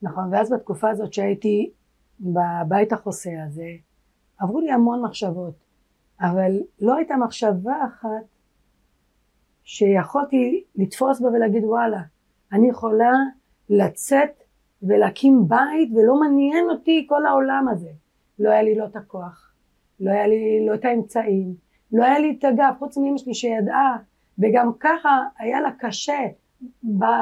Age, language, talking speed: 30-49, Hebrew, 130 wpm